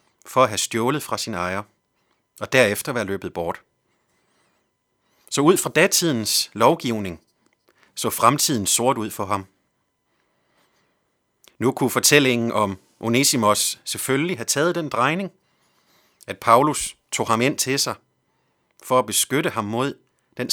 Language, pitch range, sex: Danish, 110-145 Hz, male